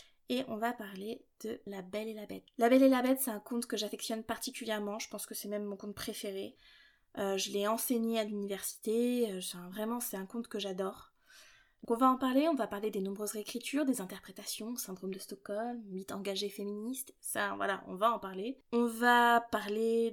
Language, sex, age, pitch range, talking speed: French, female, 20-39, 210-260 Hz, 205 wpm